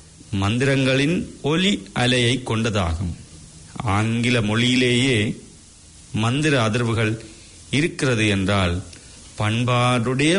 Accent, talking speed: Indian, 60 wpm